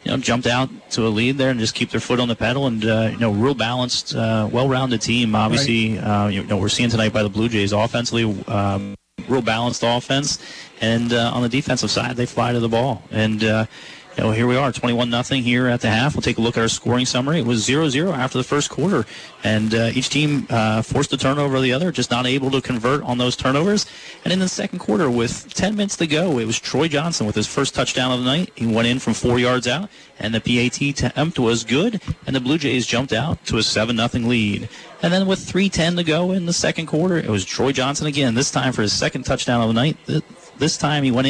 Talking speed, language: 250 wpm, English